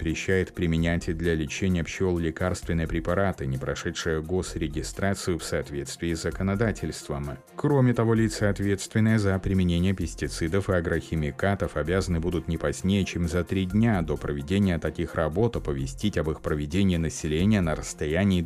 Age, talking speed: 30-49, 140 wpm